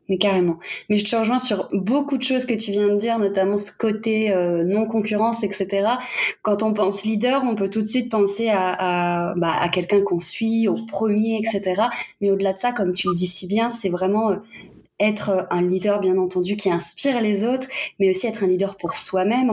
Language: French